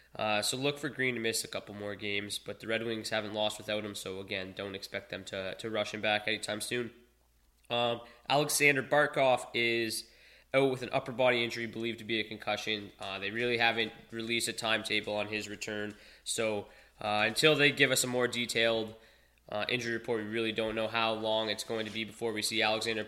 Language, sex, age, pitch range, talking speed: English, male, 10-29, 105-125 Hz, 215 wpm